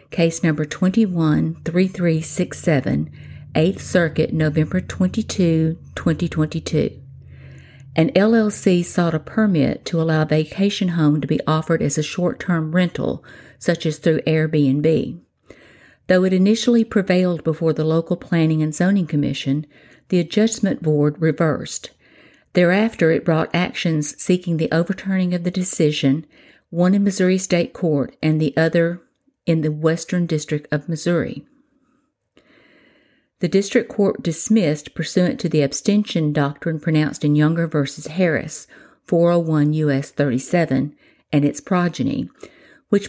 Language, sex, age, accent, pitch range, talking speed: English, female, 50-69, American, 155-185 Hz, 125 wpm